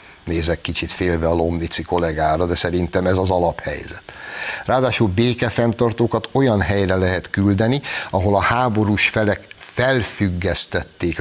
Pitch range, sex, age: 85-110 Hz, male, 60-79